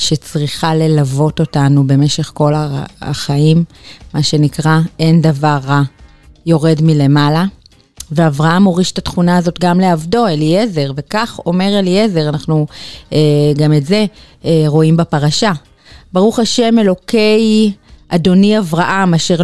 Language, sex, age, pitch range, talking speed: Hebrew, female, 30-49, 155-200 Hz, 115 wpm